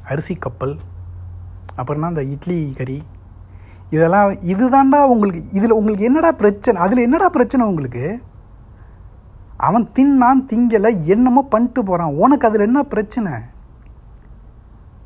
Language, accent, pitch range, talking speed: Tamil, native, 135-210 Hz, 110 wpm